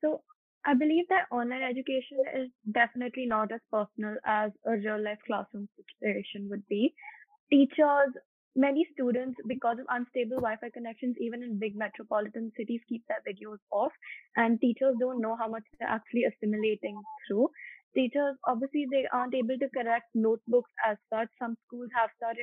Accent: Indian